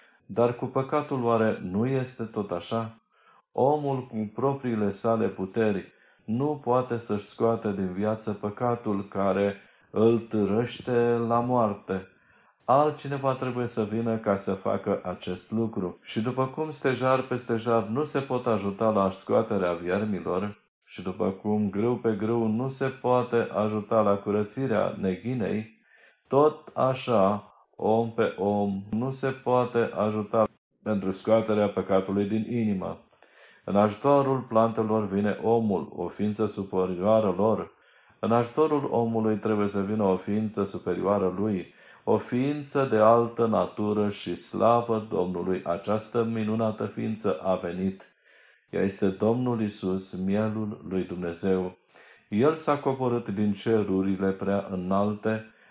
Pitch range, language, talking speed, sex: 100-120 Hz, Romanian, 130 wpm, male